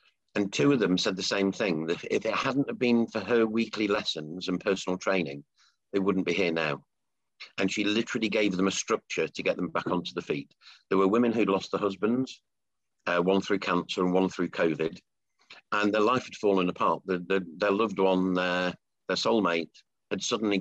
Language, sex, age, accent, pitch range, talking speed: English, male, 50-69, British, 90-105 Hz, 205 wpm